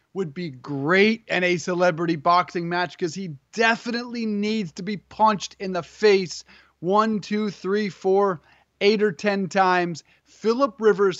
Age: 30-49